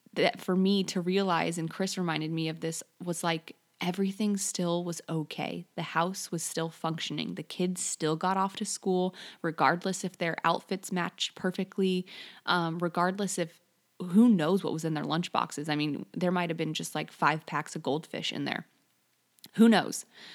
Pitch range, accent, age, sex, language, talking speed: 165-185 Hz, American, 20-39, female, English, 185 wpm